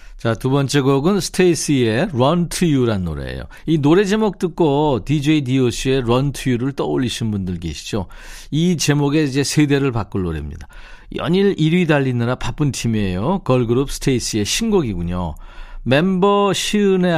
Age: 50-69